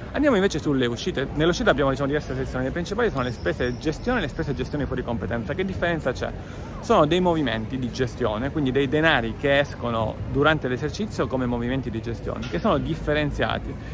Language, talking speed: Italian, 200 wpm